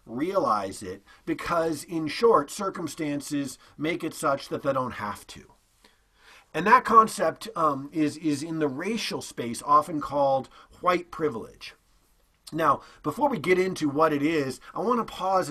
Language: English